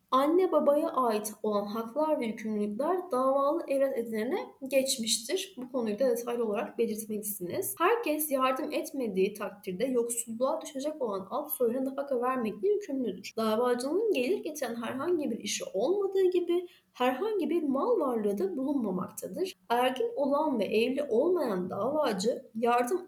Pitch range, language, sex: 220-295 Hz, Turkish, female